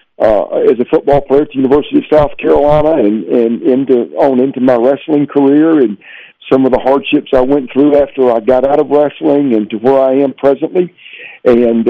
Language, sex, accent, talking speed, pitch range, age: English, male, American, 200 wpm, 120-145 Hz, 50-69